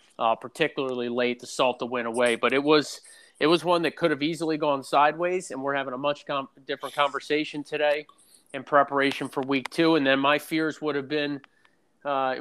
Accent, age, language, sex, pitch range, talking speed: American, 30-49, English, male, 130-155 Hz, 200 wpm